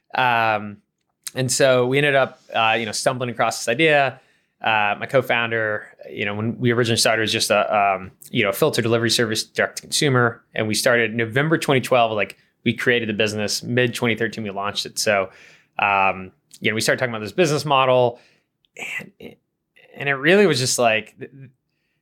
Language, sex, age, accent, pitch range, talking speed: English, male, 20-39, American, 110-130 Hz, 190 wpm